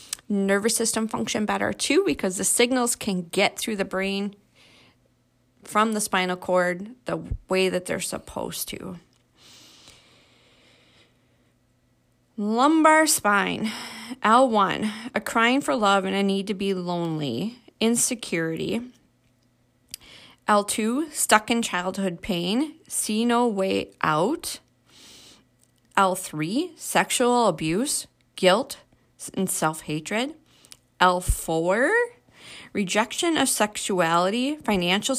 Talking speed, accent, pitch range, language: 95 wpm, American, 185-245 Hz, English